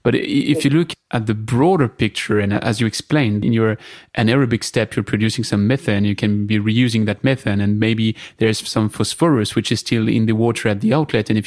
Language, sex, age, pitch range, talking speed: English, male, 30-49, 110-135 Hz, 225 wpm